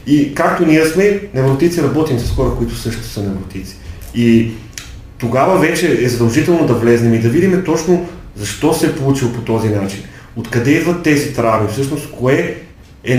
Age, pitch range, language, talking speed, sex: 30-49, 110-140 Hz, Bulgarian, 175 wpm, male